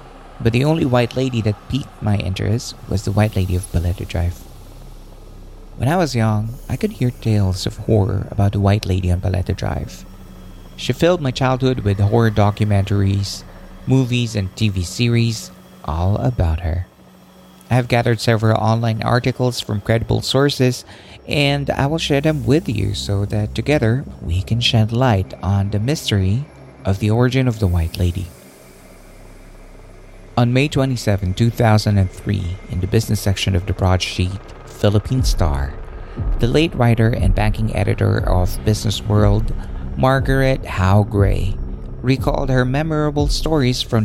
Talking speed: 150 wpm